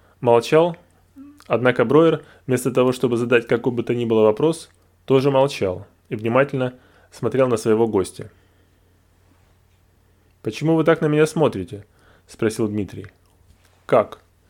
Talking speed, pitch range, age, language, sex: 125 wpm, 90-130 Hz, 20-39, Russian, male